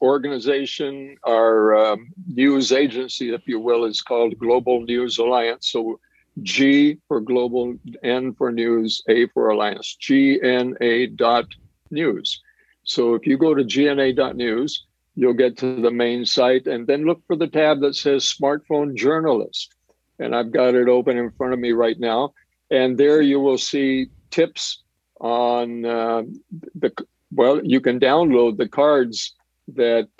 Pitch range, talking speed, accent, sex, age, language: 120-145 Hz, 145 wpm, American, male, 60-79, English